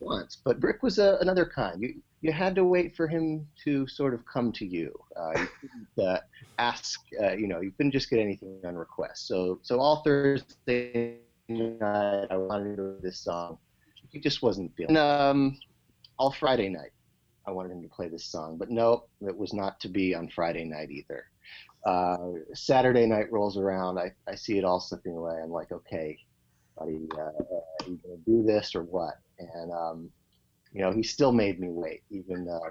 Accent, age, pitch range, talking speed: American, 30-49, 85-115 Hz, 200 wpm